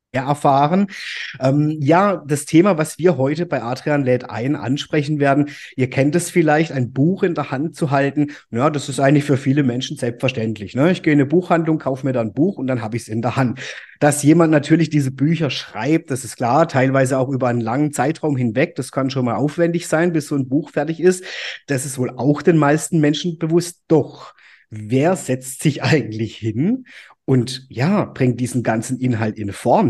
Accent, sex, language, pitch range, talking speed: German, male, German, 125-155 Hz, 205 wpm